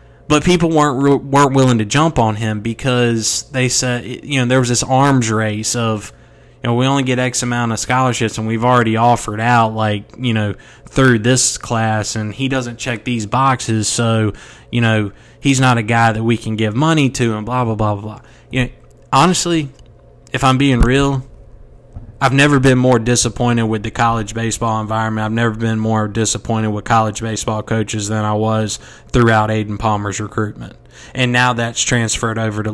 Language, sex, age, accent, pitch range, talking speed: English, male, 20-39, American, 110-125 Hz, 190 wpm